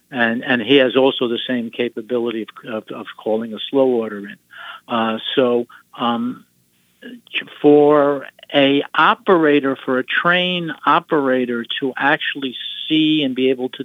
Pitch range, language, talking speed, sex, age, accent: 115-140 Hz, English, 145 wpm, male, 60-79, American